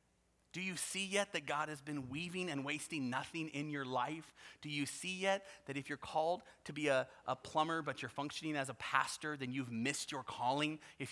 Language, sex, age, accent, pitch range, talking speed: English, male, 30-49, American, 140-180 Hz, 215 wpm